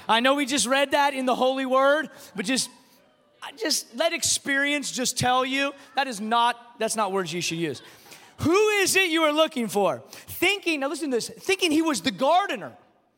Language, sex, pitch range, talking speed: English, male, 205-265 Hz, 200 wpm